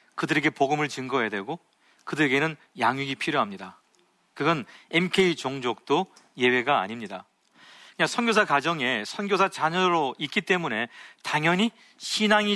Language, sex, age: Korean, male, 40-59